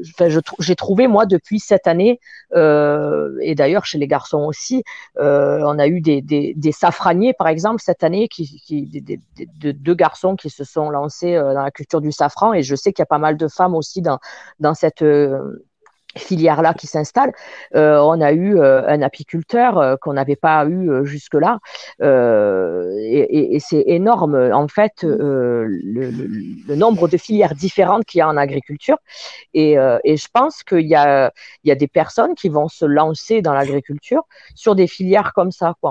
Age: 40-59